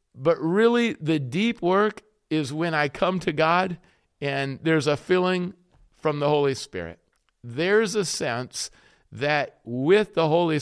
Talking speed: 145 wpm